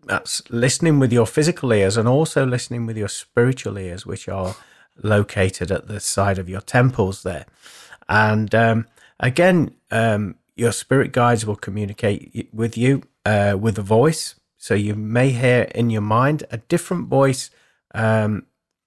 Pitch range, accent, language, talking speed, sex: 105-130 Hz, British, English, 155 wpm, male